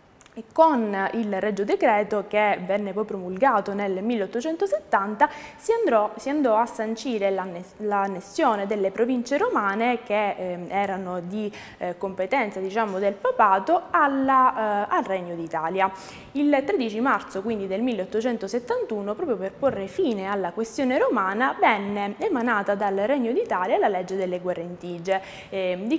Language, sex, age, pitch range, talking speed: Italian, female, 20-39, 195-255 Hz, 135 wpm